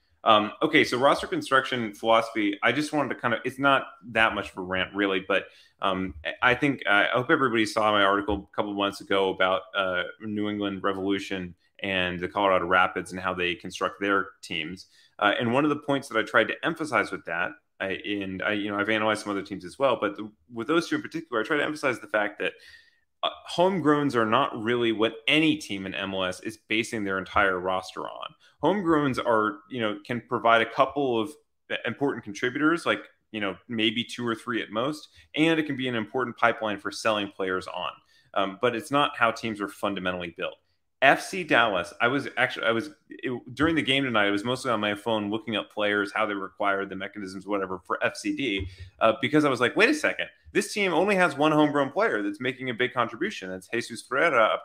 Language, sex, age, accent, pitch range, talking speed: English, male, 30-49, American, 100-130 Hz, 210 wpm